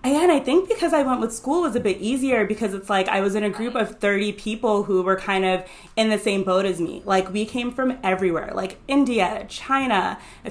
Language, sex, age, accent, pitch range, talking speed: English, female, 20-39, American, 185-240 Hz, 240 wpm